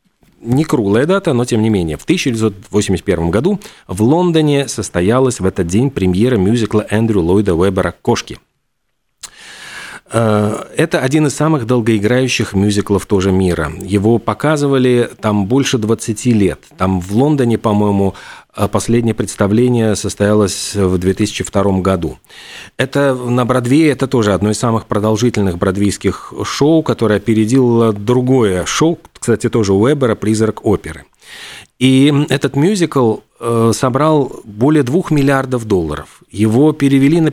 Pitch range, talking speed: 105-135 Hz, 125 wpm